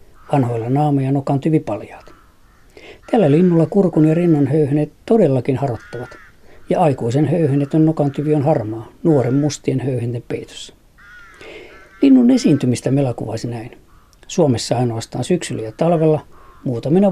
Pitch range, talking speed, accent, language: 130-160 Hz, 110 wpm, native, Finnish